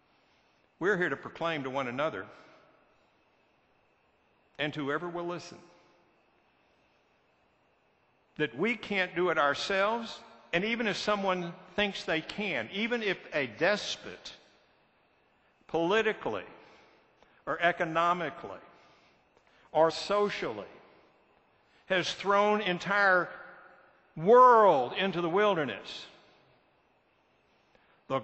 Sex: male